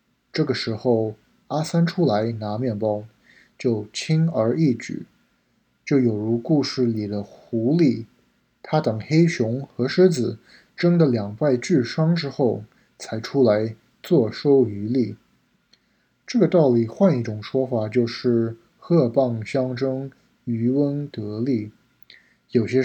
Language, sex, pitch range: Chinese, male, 115-145 Hz